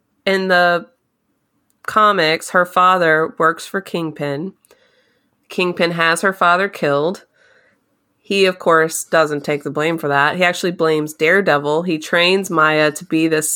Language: English